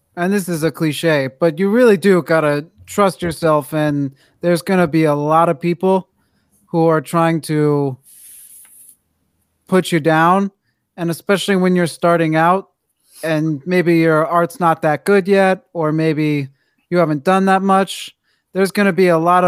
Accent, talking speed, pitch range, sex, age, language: American, 175 wpm, 150-185 Hz, male, 30-49, English